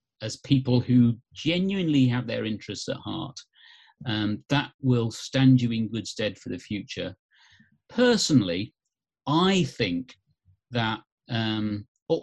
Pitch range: 105-140 Hz